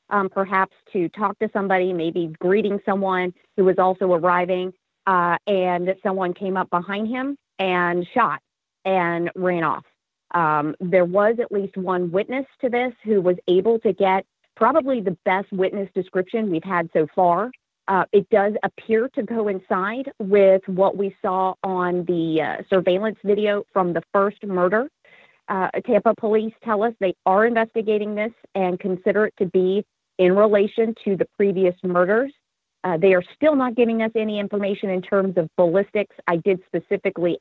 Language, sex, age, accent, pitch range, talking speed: English, female, 40-59, American, 180-215 Hz, 165 wpm